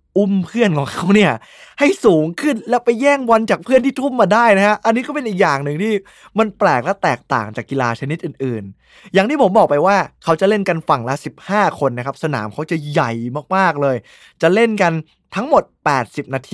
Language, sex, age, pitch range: Thai, male, 20-39, 135-195 Hz